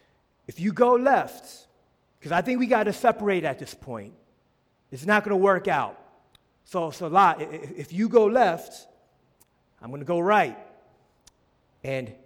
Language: English